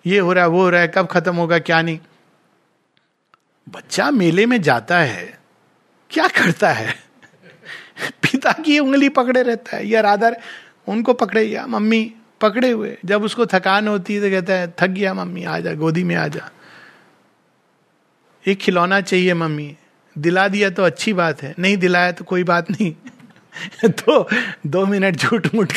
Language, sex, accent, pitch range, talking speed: Hindi, male, native, 155-205 Hz, 165 wpm